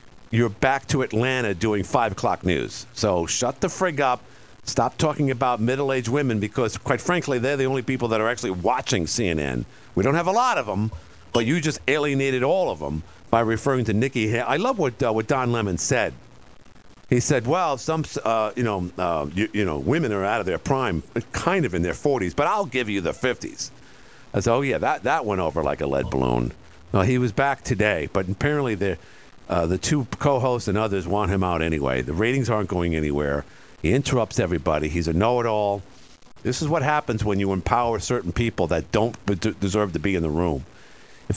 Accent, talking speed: American, 210 wpm